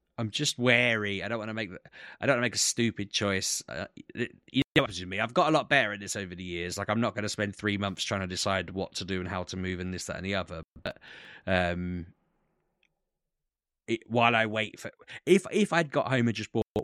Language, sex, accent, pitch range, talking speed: English, male, British, 90-115 Hz, 255 wpm